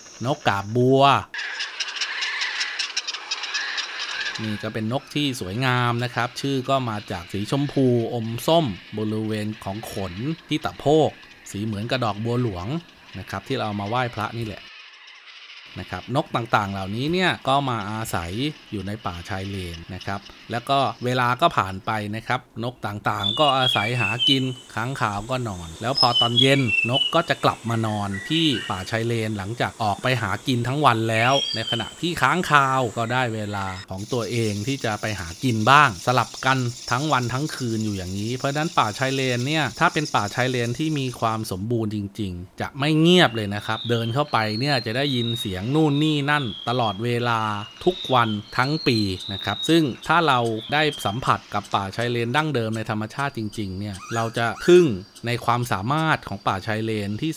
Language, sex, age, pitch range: Thai, male, 20-39, 105-135 Hz